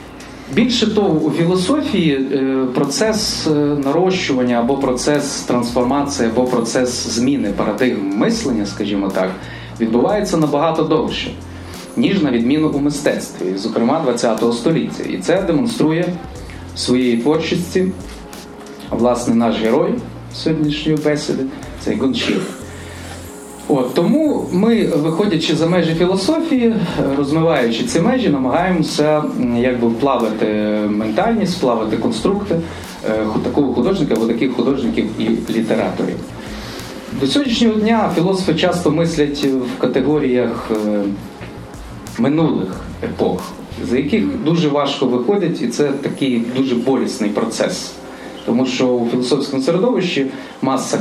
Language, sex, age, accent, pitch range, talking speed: Ukrainian, male, 30-49, native, 125-170 Hz, 105 wpm